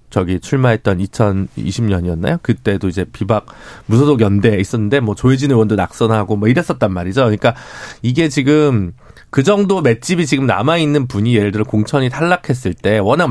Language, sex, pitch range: Korean, male, 105-150 Hz